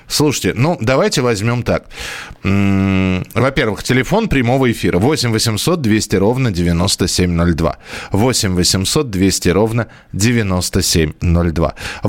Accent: native